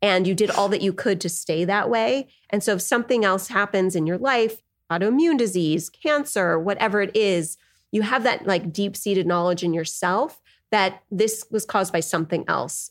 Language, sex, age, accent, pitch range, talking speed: English, female, 30-49, American, 170-205 Hz, 195 wpm